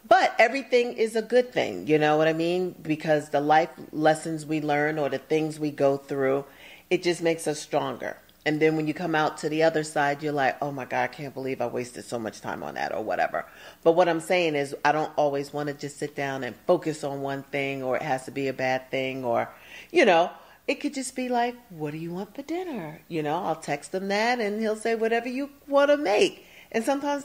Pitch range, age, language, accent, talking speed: 145-225 Hz, 40-59, English, American, 245 wpm